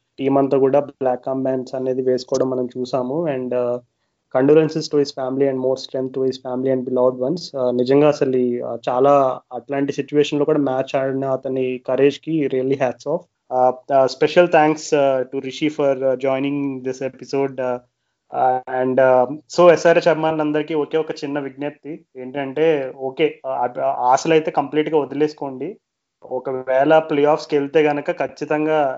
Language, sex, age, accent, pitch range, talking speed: Telugu, male, 20-39, native, 130-150 Hz, 75 wpm